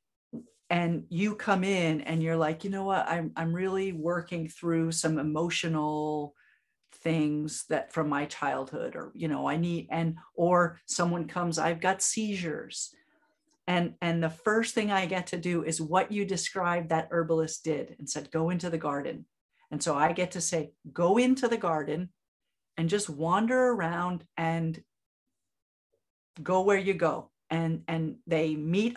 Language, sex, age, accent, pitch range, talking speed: English, female, 50-69, American, 160-195 Hz, 165 wpm